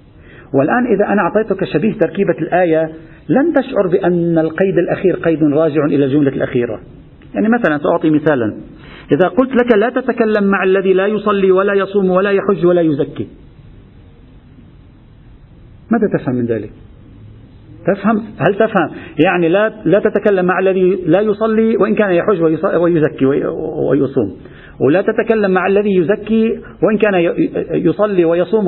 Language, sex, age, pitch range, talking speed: Arabic, male, 50-69, 160-205 Hz, 135 wpm